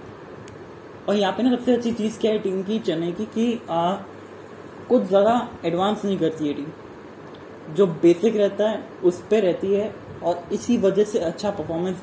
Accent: native